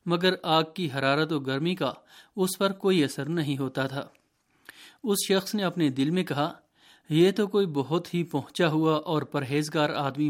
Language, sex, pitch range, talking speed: Urdu, male, 140-185 Hz, 180 wpm